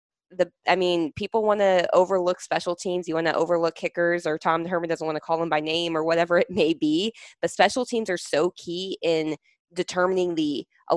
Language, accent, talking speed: English, American, 215 wpm